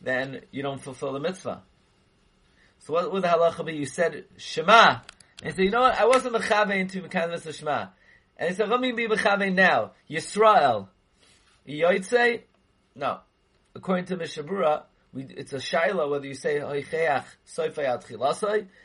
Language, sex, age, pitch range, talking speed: English, male, 30-49, 130-185 Hz, 160 wpm